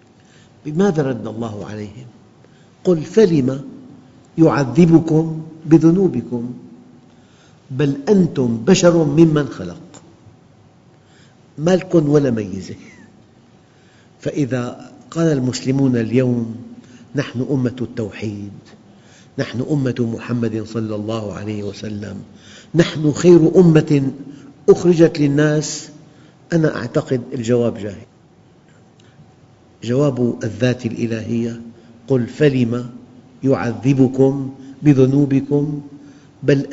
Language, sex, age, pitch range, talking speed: Arabic, male, 50-69, 120-155 Hz, 75 wpm